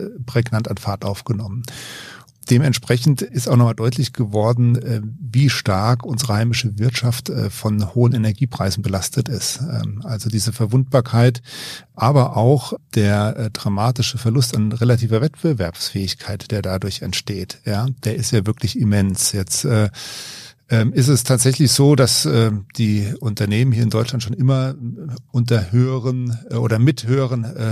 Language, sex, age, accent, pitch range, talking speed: German, male, 50-69, German, 110-125 Hz, 130 wpm